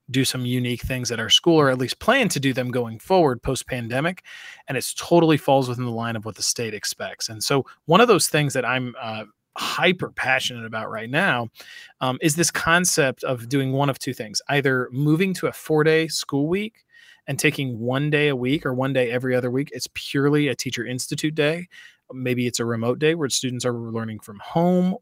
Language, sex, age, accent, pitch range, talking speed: English, male, 20-39, American, 120-150 Hz, 220 wpm